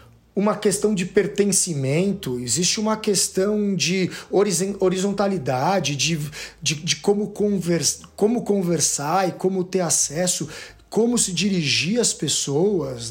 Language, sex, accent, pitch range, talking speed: Portuguese, male, Brazilian, 170-220 Hz, 115 wpm